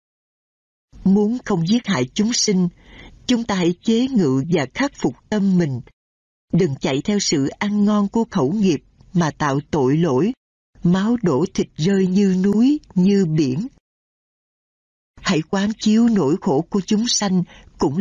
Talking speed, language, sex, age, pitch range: 155 wpm, Vietnamese, female, 60-79, 155-210 Hz